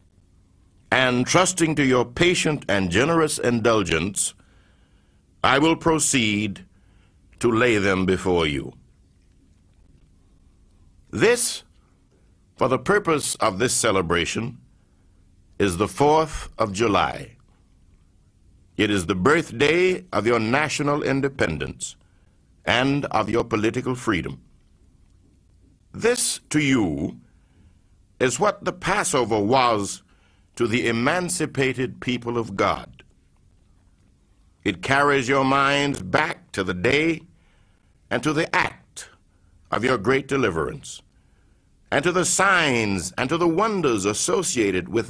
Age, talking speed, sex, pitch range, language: 60-79, 110 wpm, male, 95-140 Hz, English